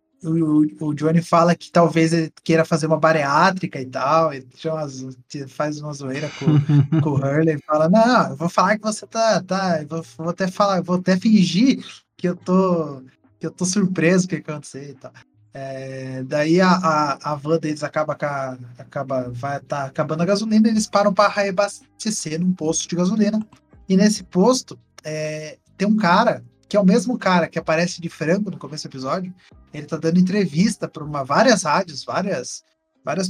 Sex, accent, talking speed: male, Brazilian, 190 wpm